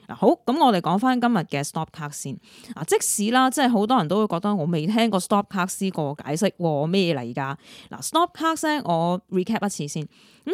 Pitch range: 160-235 Hz